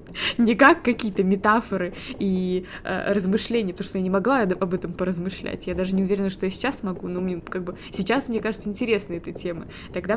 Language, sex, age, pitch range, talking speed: Russian, female, 20-39, 190-225 Hz, 200 wpm